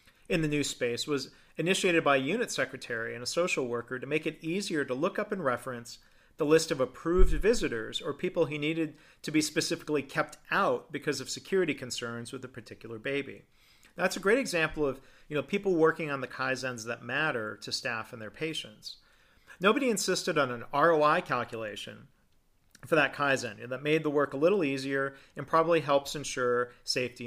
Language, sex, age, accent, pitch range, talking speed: English, male, 40-59, American, 125-160 Hz, 185 wpm